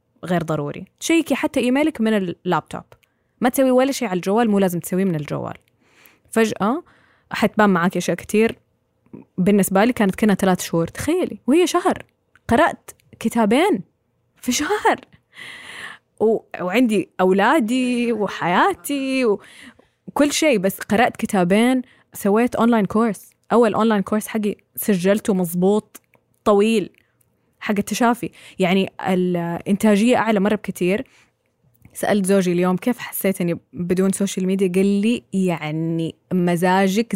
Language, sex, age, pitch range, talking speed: Arabic, female, 20-39, 185-245 Hz, 120 wpm